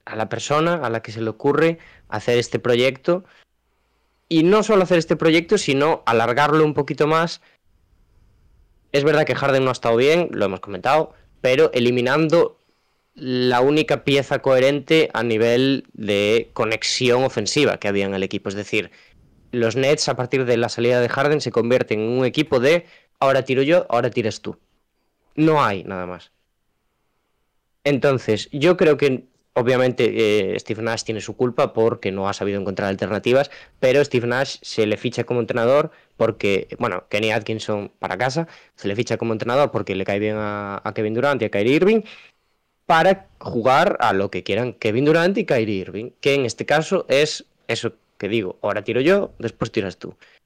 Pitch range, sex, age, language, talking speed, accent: 110-145 Hz, male, 20-39, Spanish, 180 wpm, Spanish